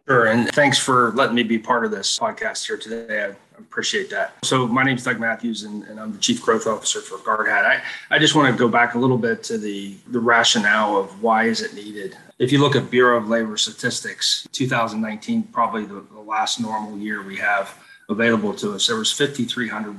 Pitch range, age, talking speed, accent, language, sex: 110-135 Hz, 30-49, 220 wpm, American, English, male